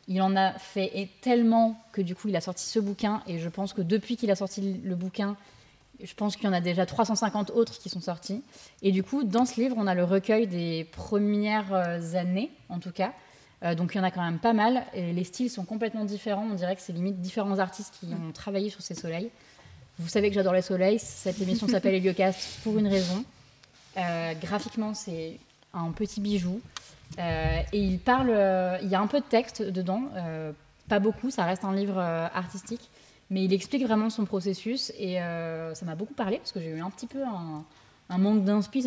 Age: 20-39